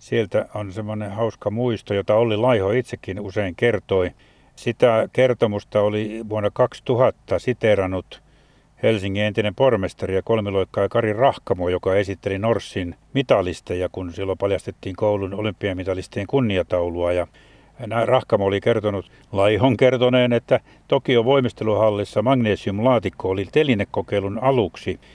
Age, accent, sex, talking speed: 60-79, native, male, 110 wpm